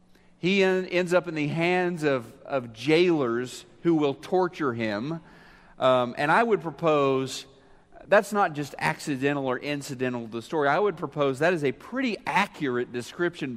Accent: American